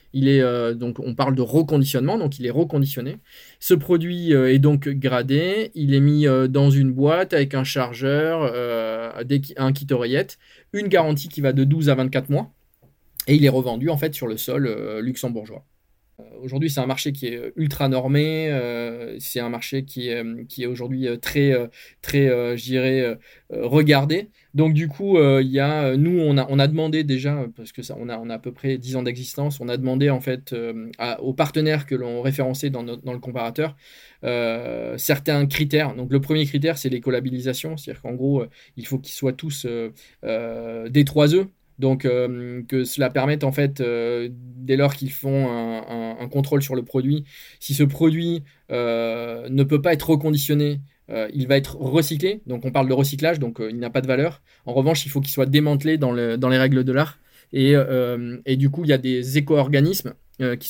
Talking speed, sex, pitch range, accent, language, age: 210 wpm, male, 125-145 Hz, French, English, 20-39